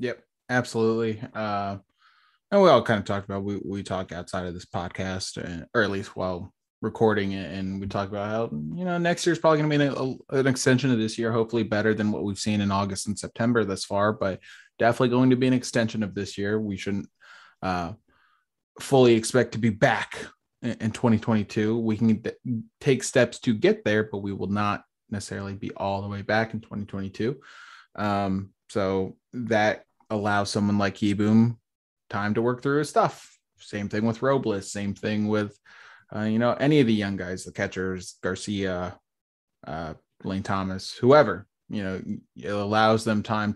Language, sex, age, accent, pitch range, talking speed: English, male, 20-39, American, 100-115 Hz, 190 wpm